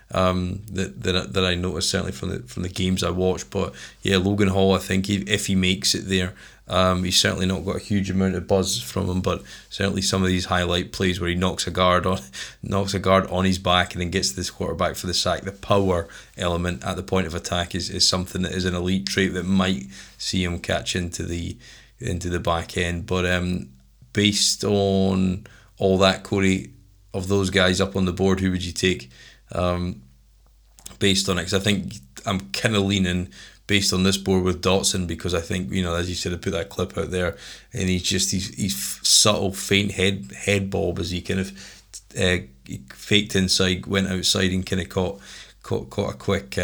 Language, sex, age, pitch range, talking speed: English, male, 20-39, 90-100 Hz, 215 wpm